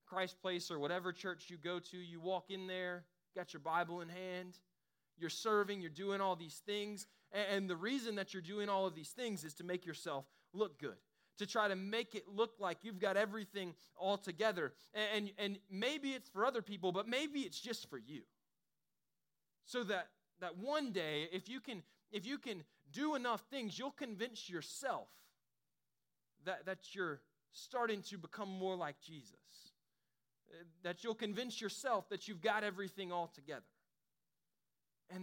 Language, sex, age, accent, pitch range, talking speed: English, male, 20-39, American, 175-215 Hz, 175 wpm